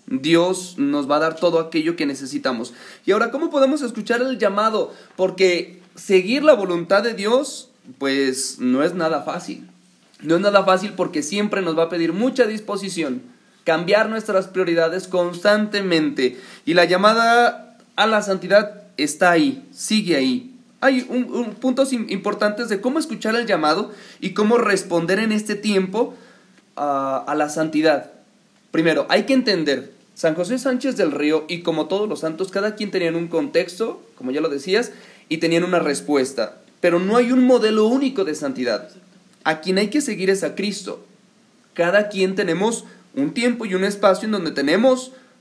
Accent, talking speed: Mexican, 165 wpm